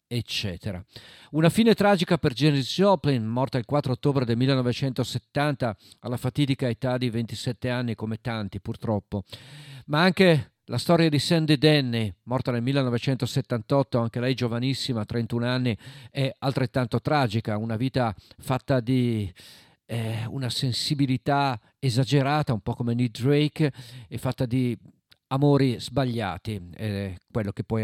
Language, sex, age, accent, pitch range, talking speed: Italian, male, 40-59, native, 110-135 Hz, 135 wpm